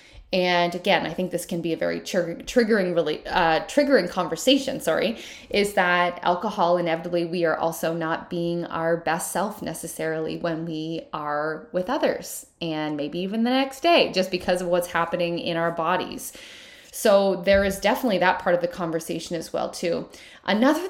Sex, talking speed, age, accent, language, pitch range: female, 170 wpm, 20-39, American, English, 170-250 Hz